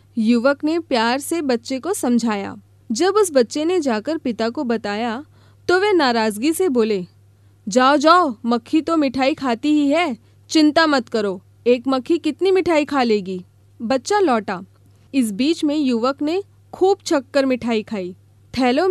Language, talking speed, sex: Hindi, 155 wpm, female